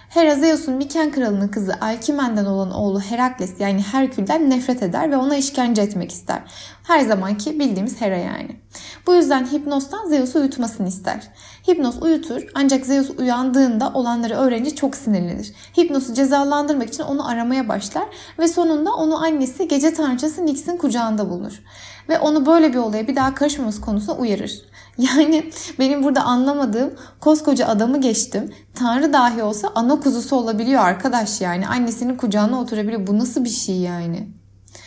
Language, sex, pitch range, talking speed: Turkish, female, 230-300 Hz, 150 wpm